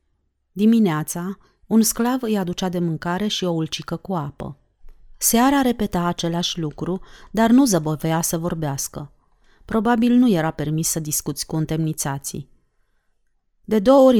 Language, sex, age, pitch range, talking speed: Romanian, female, 30-49, 160-210 Hz, 135 wpm